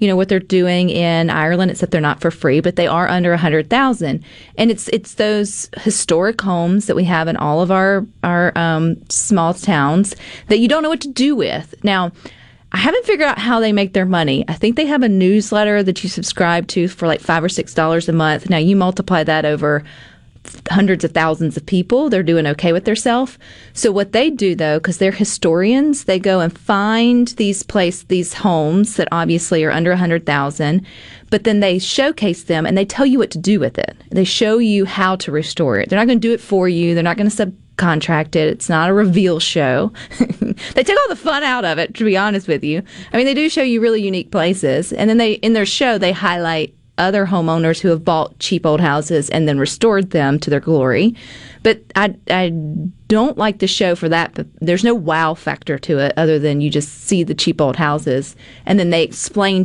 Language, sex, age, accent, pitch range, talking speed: English, female, 30-49, American, 160-205 Hz, 225 wpm